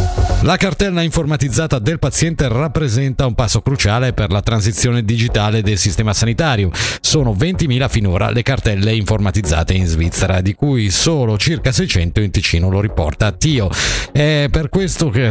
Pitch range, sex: 105-145 Hz, male